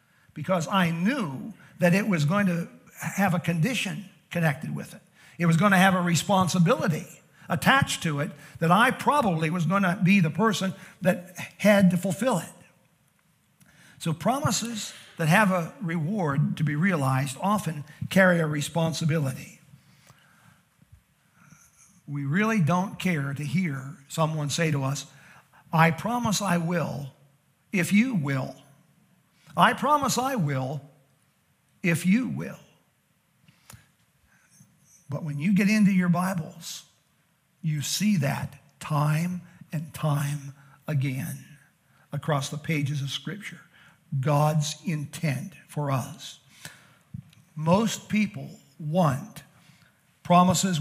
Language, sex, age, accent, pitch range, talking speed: English, male, 50-69, American, 150-185 Hz, 120 wpm